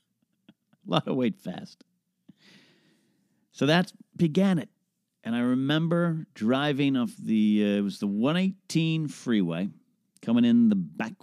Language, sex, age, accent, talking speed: English, male, 40-59, American, 135 wpm